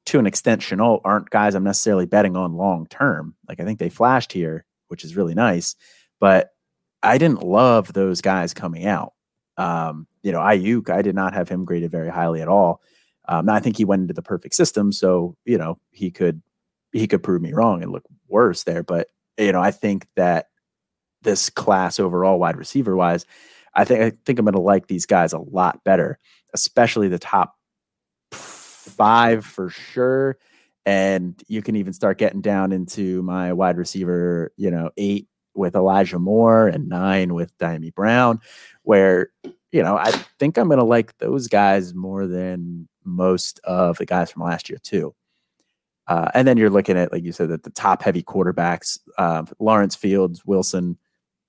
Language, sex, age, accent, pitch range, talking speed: English, male, 30-49, American, 90-100 Hz, 185 wpm